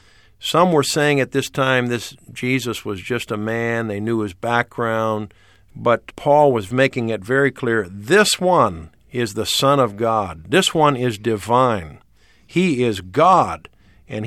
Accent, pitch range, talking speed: American, 110-140 Hz, 160 wpm